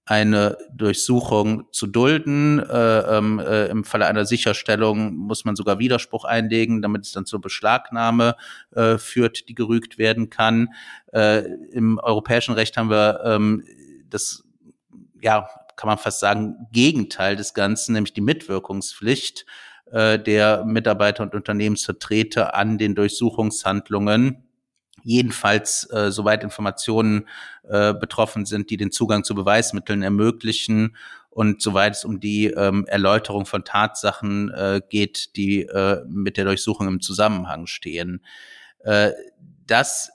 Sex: male